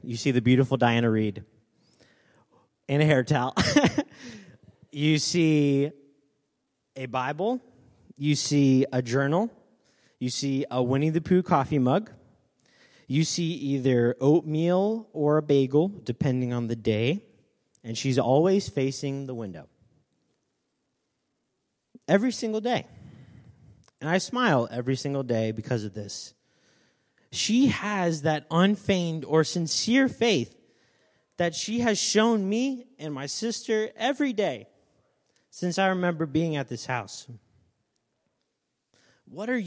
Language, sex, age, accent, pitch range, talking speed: English, male, 30-49, American, 130-205 Hz, 125 wpm